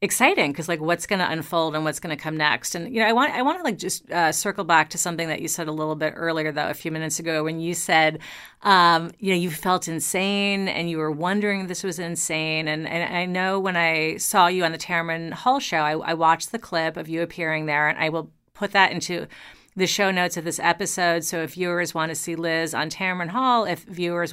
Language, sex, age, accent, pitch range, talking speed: English, female, 40-59, American, 160-195 Hz, 255 wpm